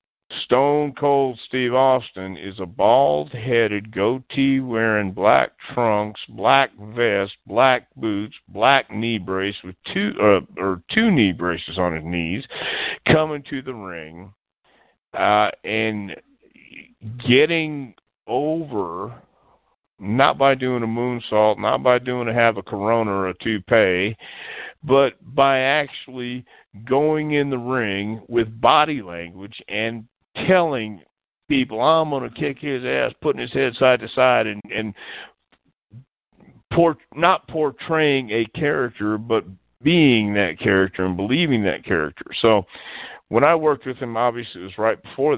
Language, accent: English, American